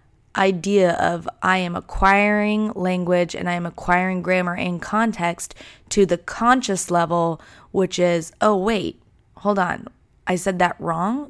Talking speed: 145 wpm